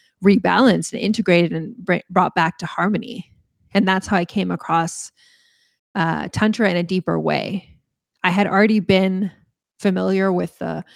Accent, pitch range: American, 170-200 Hz